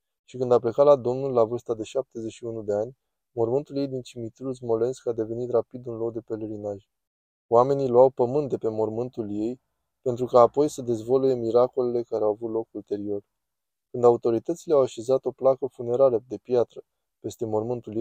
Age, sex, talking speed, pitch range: 20-39, male, 175 wpm, 110-130 Hz